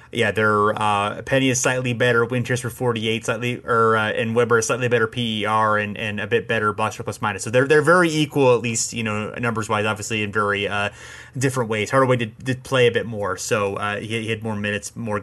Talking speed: 235 wpm